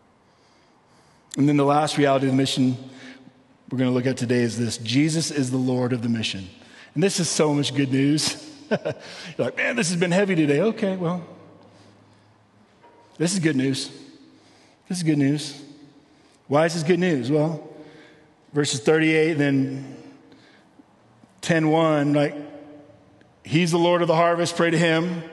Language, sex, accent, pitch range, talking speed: English, male, American, 145-210 Hz, 160 wpm